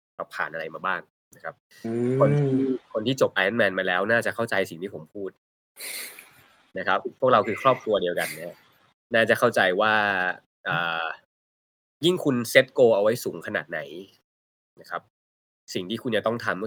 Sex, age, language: male, 20-39, Thai